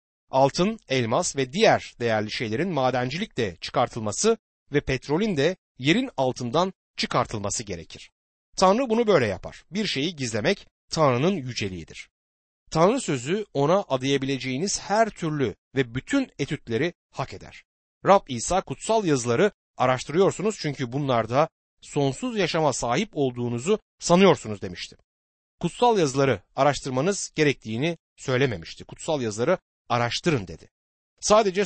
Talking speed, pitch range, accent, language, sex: 110 wpm, 115-180 Hz, native, Turkish, male